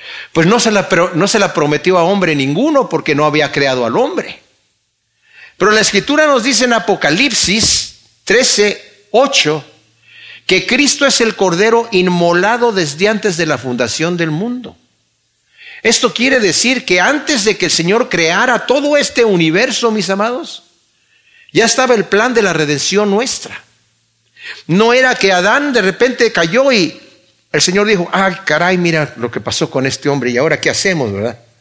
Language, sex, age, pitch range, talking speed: Spanish, male, 50-69, 150-220 Hz, 165 wpm